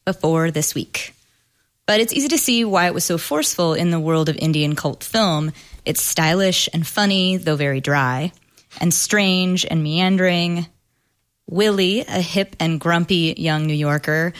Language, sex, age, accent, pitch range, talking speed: English, female, 20-39, American, 150-190 Hz, 165 wpm